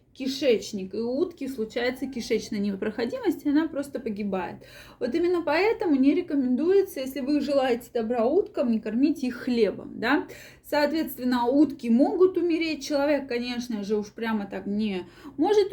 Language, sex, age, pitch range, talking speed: Russian, female, 20-39, 220-285 Hz, 145 wpm